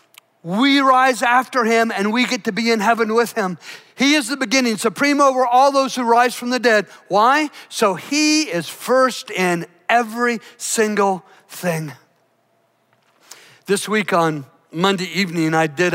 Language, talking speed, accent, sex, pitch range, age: English, 160 wpm, American, male, 175-230 Hz, 50-69